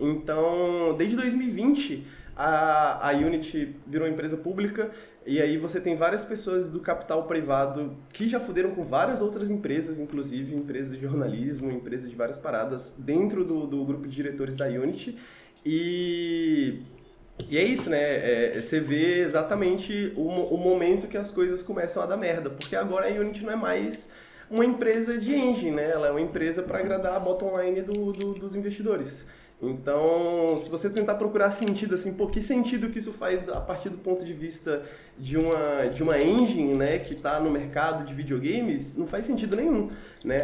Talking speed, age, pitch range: 180 wpm, 20-39, 150-200 Hz